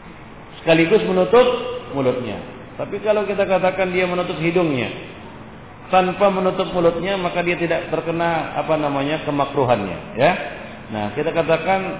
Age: 50-69